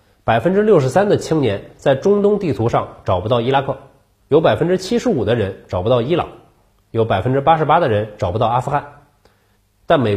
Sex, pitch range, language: male, 100-145 Hz, Chinese